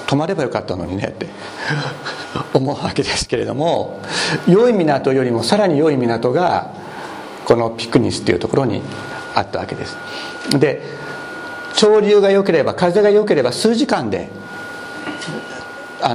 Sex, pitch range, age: male, 130-180 Hz, 60-79